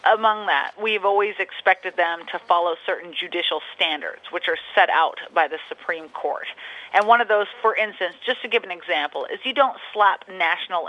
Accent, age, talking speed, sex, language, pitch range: American, 30-49, 195 wpm, female, English, 175-225 Hz